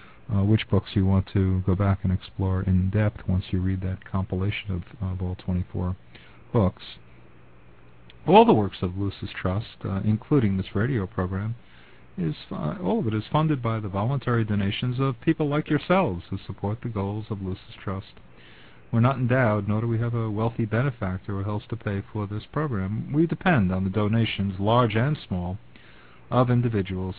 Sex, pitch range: male, 95-110 Hz